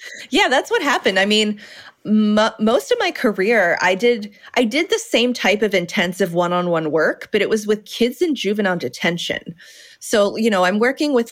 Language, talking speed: English, 190 wpm